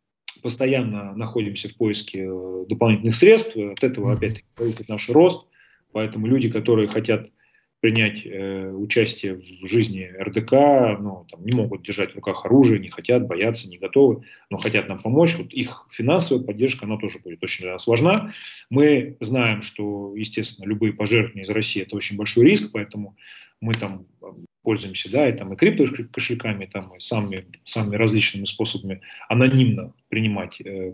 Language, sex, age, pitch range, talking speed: Russian, male, 30-49, 100-125 Hz, 155 wpm